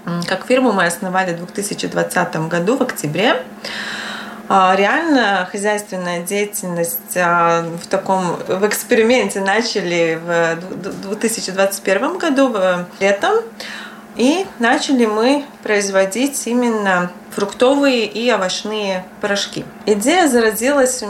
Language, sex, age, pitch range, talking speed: Russian, female, 20-39, 190-245 Hz, 95 wpm